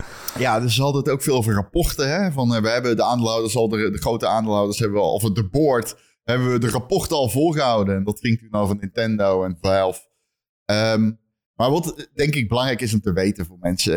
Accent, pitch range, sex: Dutch, 105-140 Hz, male